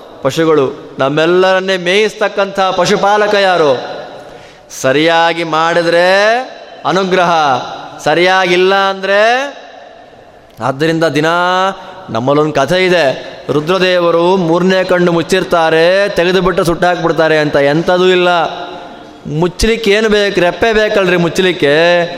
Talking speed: 85 wpm